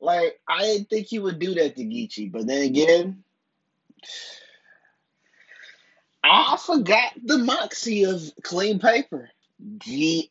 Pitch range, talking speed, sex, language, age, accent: 150-220 Hz, 120 wpm, male, English, 20-39, American